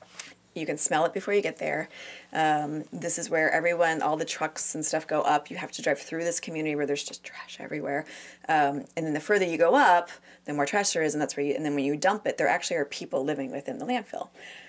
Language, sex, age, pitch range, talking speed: English, female, 30-49, 145-185 Hz, 255 wpm